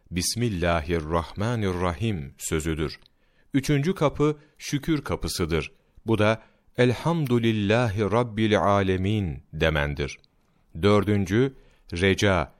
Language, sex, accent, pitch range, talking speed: Turkish, male, native, 90-130 Hz, 65 wpm